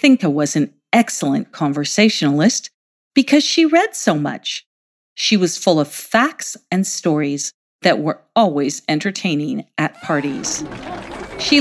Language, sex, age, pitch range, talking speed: English, female, 50-69, 155-255 Hz, 125 wpm